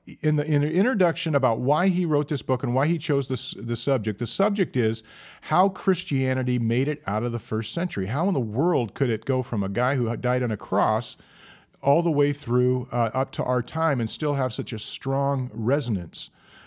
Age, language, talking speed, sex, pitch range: 40-59, English, 225 wpm, male, 120-160 Hz